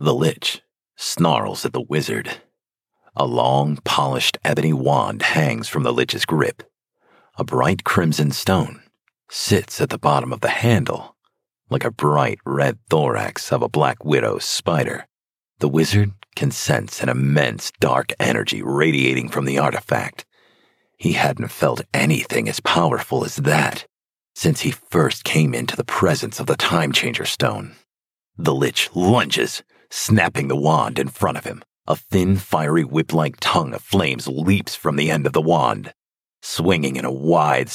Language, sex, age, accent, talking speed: English, male, 40-59, American, 155 wpm